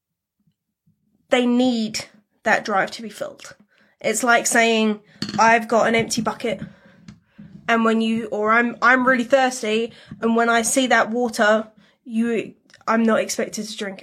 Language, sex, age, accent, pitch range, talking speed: English, female, 20-39, British, 220-260 Hz, 150 wpm